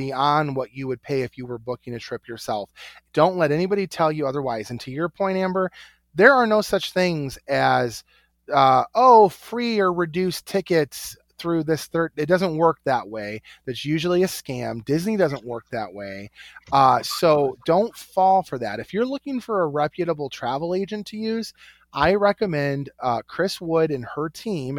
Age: 30-49